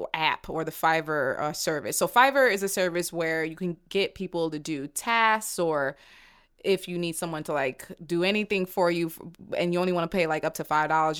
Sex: female